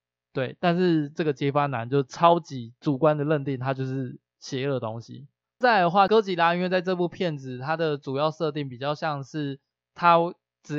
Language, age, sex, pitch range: Chinese, 20-39, male, 130-165 Hz